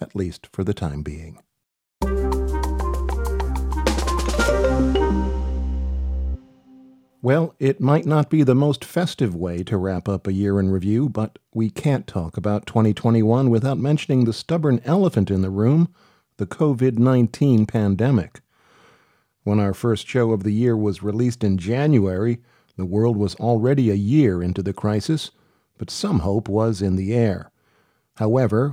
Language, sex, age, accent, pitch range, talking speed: Finnish, male, 50-69, American, 100-125 Hz, 140 wpm